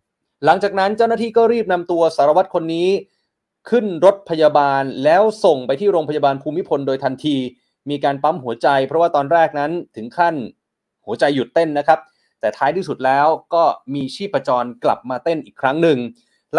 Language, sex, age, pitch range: Thai, male, 20-39, 135-180 Hz